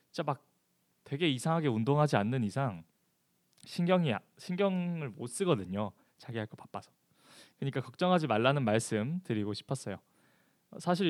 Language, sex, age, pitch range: Korean, male, 20-39, 115-165 Hz